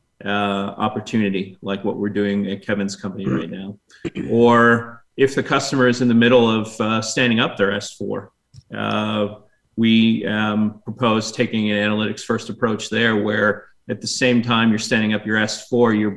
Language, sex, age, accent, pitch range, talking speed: English, male, 30-49, American, 105-120 Hz, 170 wpm